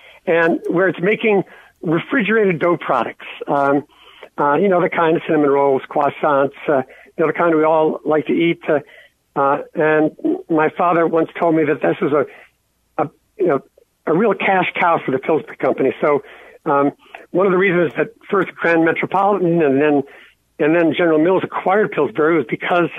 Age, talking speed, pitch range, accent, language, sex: 60-79, 185 wpm, 160-195 Hz, American, English, male